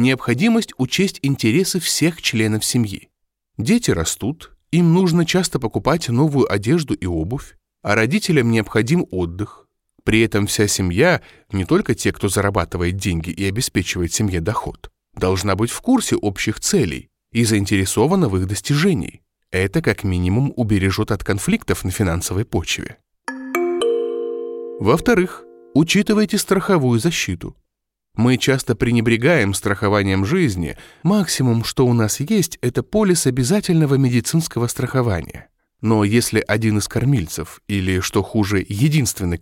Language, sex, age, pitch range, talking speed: Russian, male, 20-39, 100-165 Hz, 125 wpm